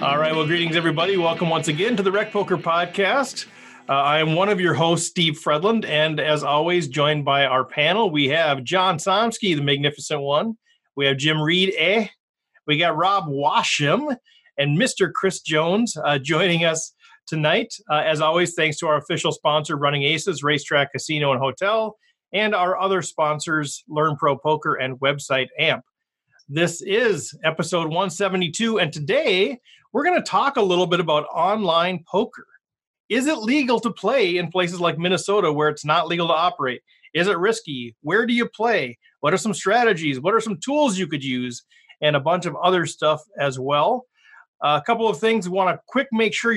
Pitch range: 150-210 Hz